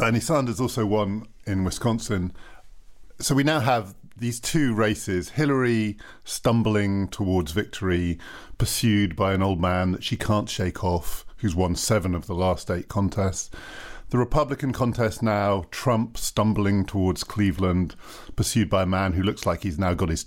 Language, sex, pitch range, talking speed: English, male, 95-120 Hz, 160 wpm